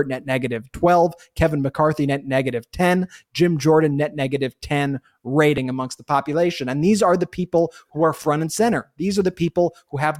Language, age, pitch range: English, 20-39, 140-175 Hz